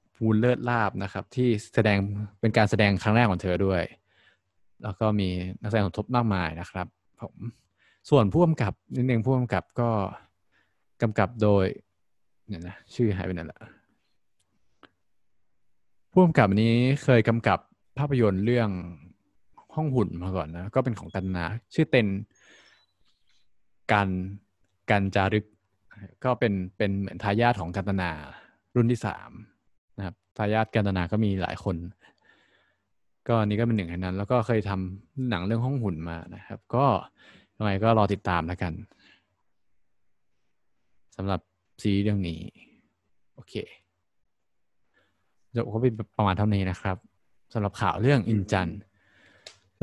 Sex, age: male, 20-39